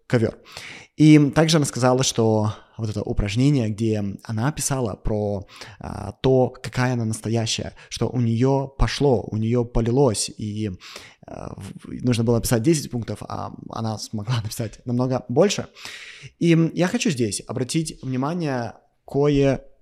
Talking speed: 135 wpm